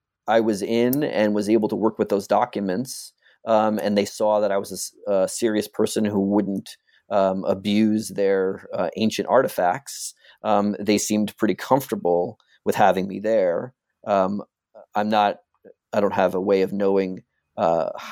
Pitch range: 100-115 Hz